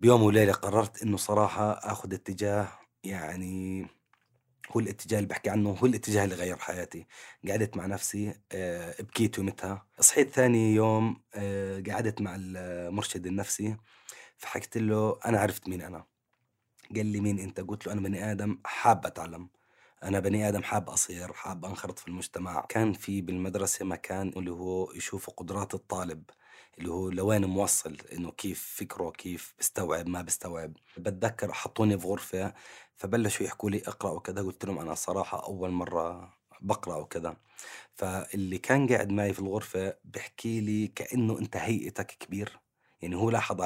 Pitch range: 95-105 Hz